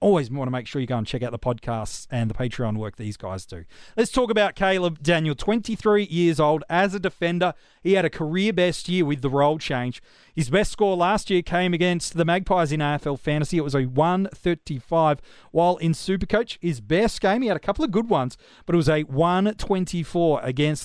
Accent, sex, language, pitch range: Australian, male, English, 150-195 Hz